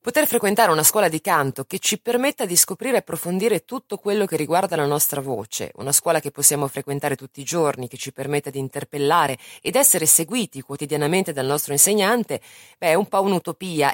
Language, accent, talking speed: Italian, native, 195 wpm